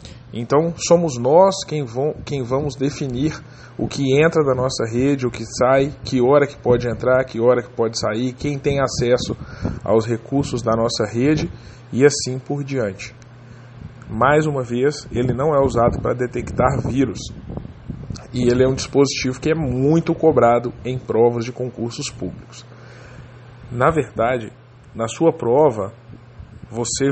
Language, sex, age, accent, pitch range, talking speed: English, male, 20-39, Brazilian, 120-140 Hz, 150 wpm